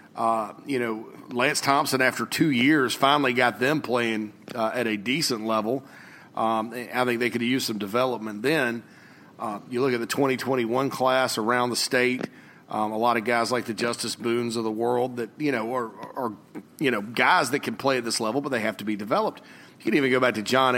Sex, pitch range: male, 115-130 Hz